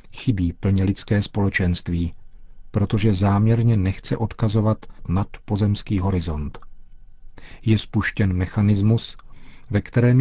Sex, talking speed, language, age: male, 95 wpm, Czech, 40-59